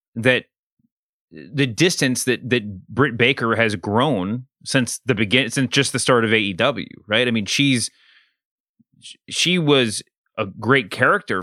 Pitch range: 115-135 Hz